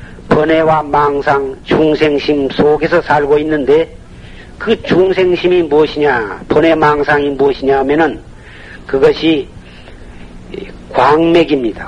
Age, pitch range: 50-69, 145-205 Hz